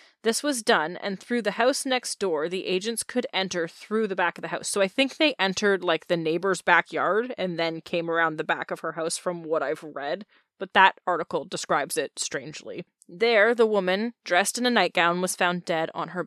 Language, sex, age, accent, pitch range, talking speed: English, female, 20-39, American, 170-225 Hz, 220 wpm